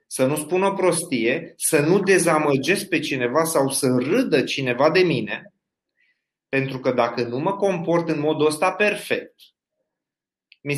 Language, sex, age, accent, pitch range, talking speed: Romanian, male, 30-49, native, 125-160 Hz, 150 wpm